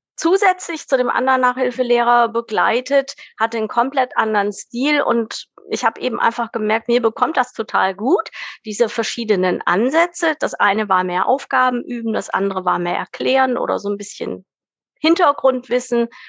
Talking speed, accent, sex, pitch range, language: 150 wpm, German, female, 205-250 Hz, German